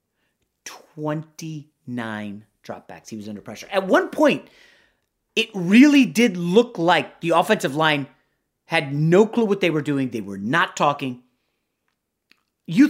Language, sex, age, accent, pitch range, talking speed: English, male, 30-49, American, 155-230 Hz, 135 wpm